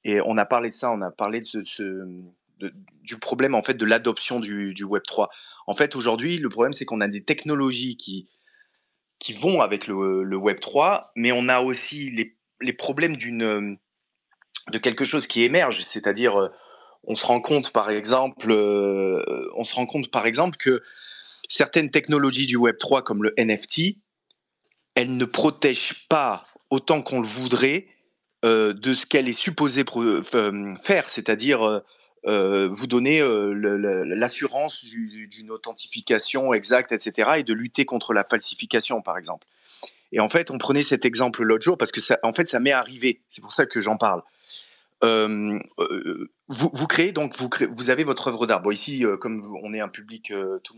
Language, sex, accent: English, male, French